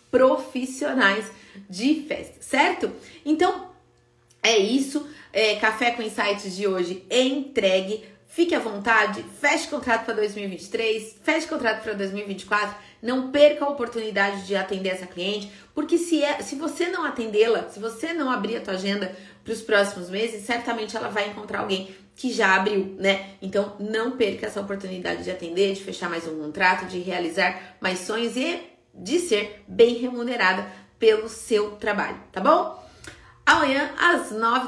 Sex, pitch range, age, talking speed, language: female, 200-260 Hz, 30-49, 155 wpm, Portuguese